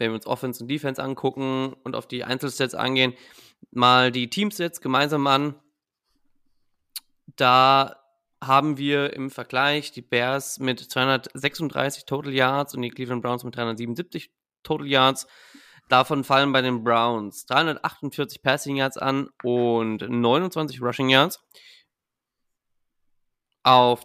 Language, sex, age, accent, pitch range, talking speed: German, male, 20-39, German, 125-145 Hz, 125 wpm